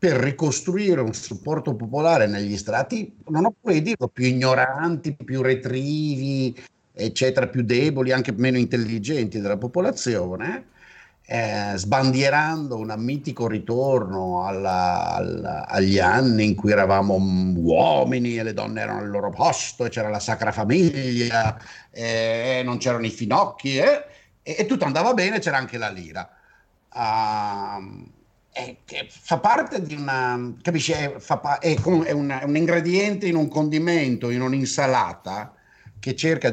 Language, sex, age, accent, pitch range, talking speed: Italian, male, 50-69, native, 110-155 Hz, 140 wpm